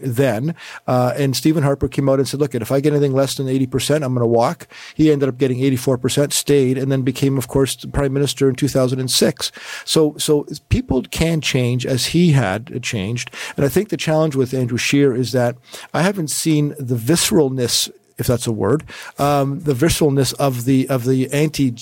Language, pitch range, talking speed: English, 125-145 Hz, 215 wpm